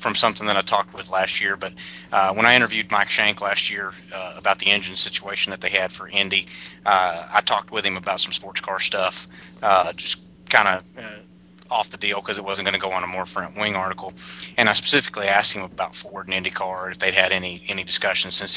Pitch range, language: 85-100 Hz, English